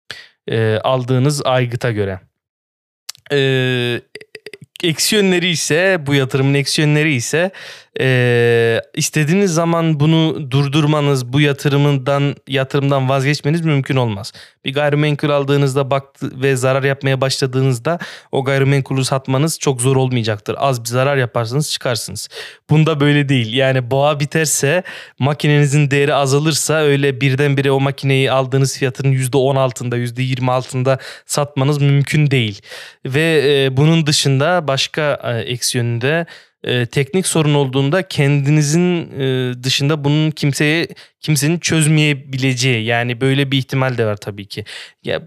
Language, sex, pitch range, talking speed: Turkish, male, 125-145 Hz, 120 wpm